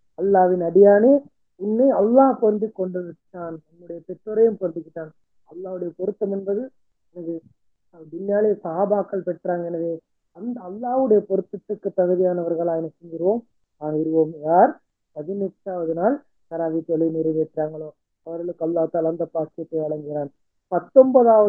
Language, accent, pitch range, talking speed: Tamil, native, 165-200 Hz, 90 wpm